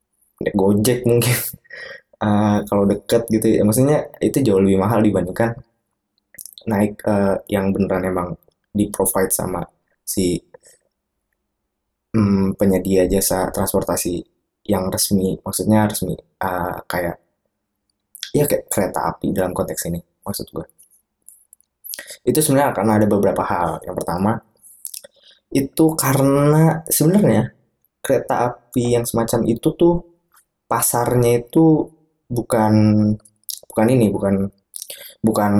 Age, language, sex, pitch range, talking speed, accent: 20-39, Indonesian, male, 100-120 Hz, 110 wpm, native